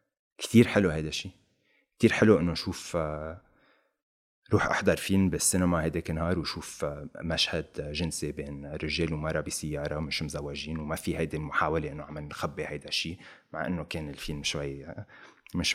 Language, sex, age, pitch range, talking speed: Arabic, male, 30-49, 75-95 Hz, 145 wpm